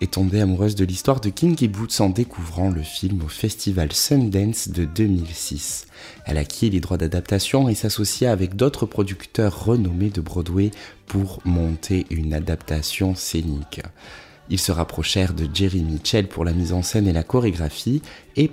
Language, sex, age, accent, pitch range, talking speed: French, male, 20-39, French, 90-110 Hz, 160 wpm